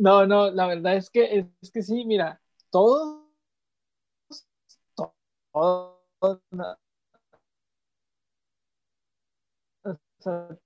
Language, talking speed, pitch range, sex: Spanish, 80 wpm, 165-195 Hz, male